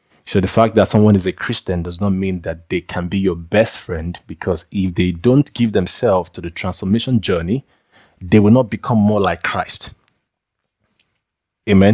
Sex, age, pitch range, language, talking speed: male, 20-39, 95-110 Hz, English, 180 wpm